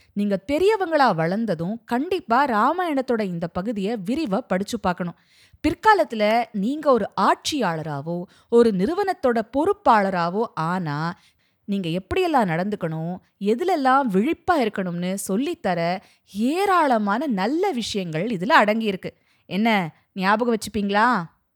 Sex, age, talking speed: female, 20-39, 90 wpm